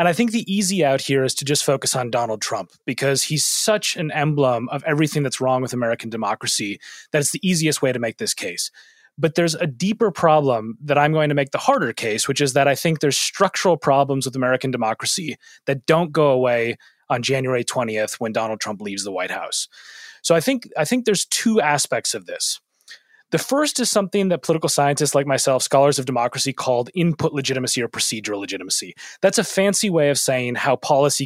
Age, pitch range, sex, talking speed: 30-49, 130-170 Hz, male, 205 wpm